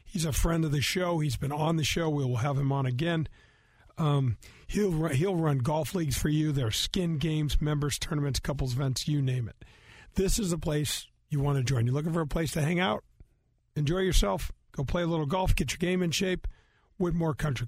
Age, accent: 50-69, American